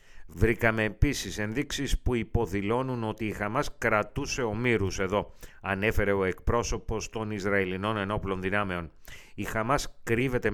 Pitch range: 100-120 Hz